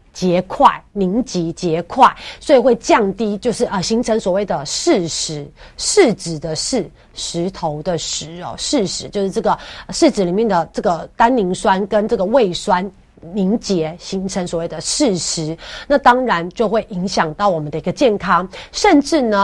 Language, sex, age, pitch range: Chinese, female, 30-49, 175-230 Hz